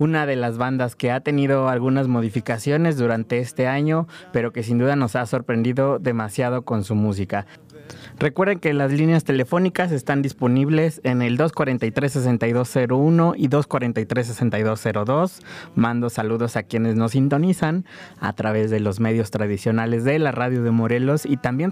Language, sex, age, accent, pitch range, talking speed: Spanish, male, 20-39, Mexican, 115-140 Hz, 150 wpm